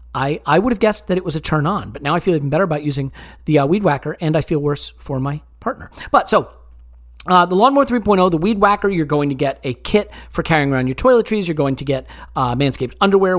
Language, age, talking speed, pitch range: English, 40-59, 255 wpm, 135-180 Hz